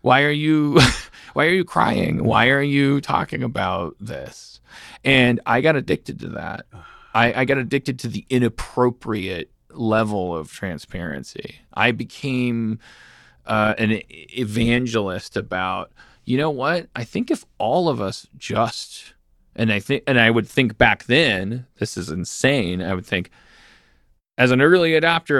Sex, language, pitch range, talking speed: male, English, 90-125 Hz, 150 wpm